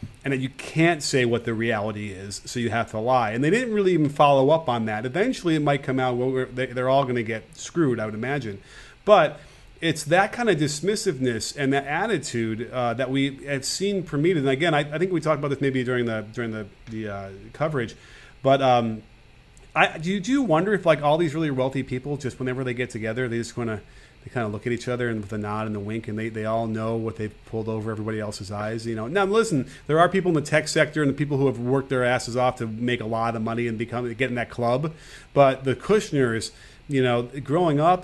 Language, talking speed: English, 245 wpm